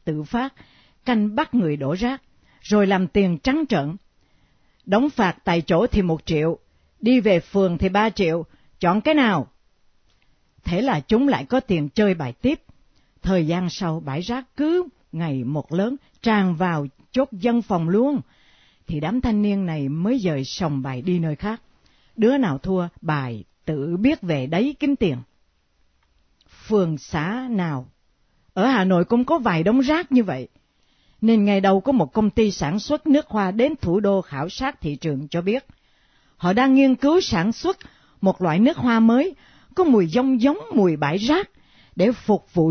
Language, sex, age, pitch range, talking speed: Vietnamese, female, 60-79, 165-255 Hz, 180 wpm